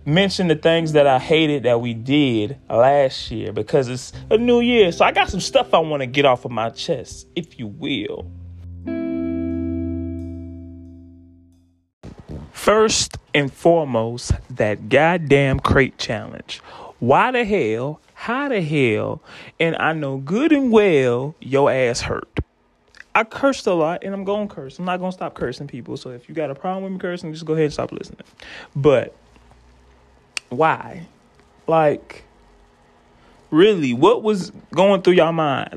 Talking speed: 160 wpm